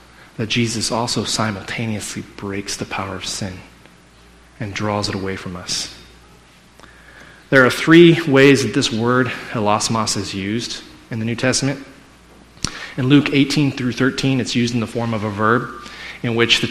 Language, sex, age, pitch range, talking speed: English, male, 30-49, 105-130 Hz, 160 wpm